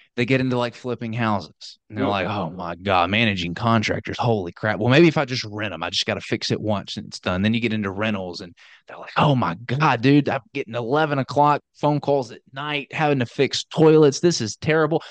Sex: male